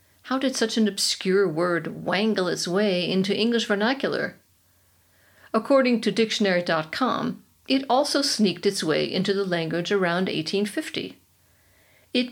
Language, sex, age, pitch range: English, female, 50-69, 180-235 Hz